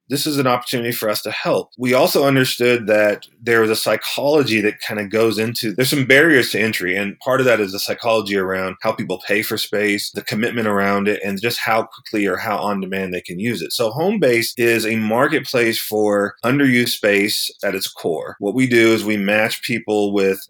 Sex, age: male, 30-49